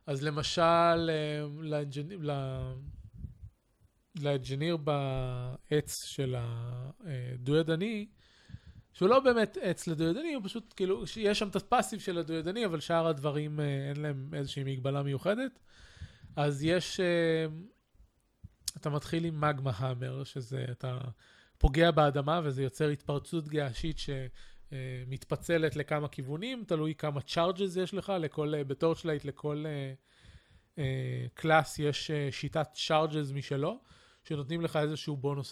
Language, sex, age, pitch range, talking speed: Hebrew, male, 20-39, 135-165 Hz, 120 wpm